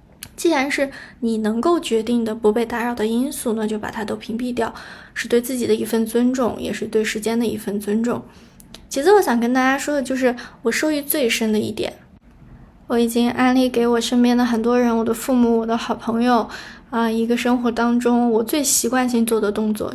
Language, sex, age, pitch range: Chinese, female, 20-39, 225-260 Hz